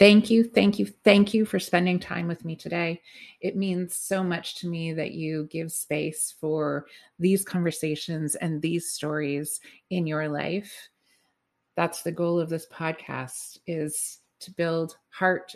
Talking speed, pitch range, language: 160 wpm, 155-195 Hz, English